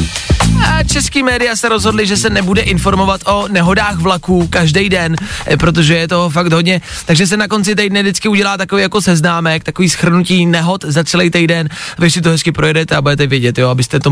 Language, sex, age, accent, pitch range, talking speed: Czech, male, 20-39, native, 145-195 Hz, 195 wpm